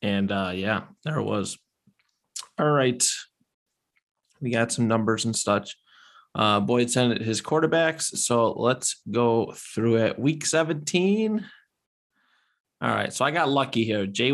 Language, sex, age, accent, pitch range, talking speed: English, male, 20-39, American, 115-145 Hz, 140 wpm